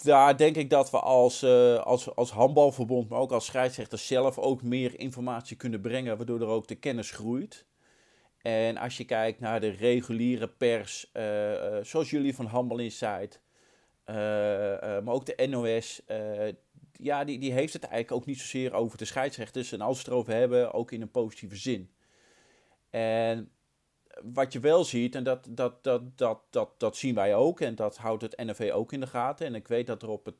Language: Dutch